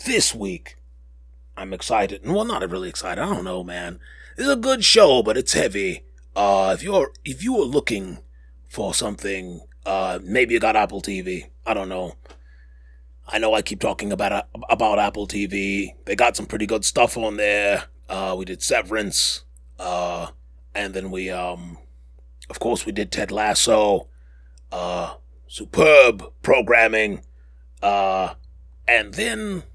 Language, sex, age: English, male, 30-49